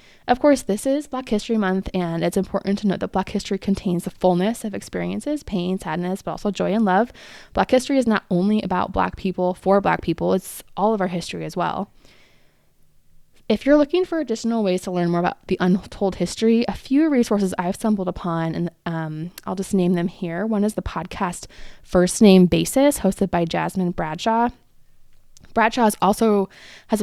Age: 20-39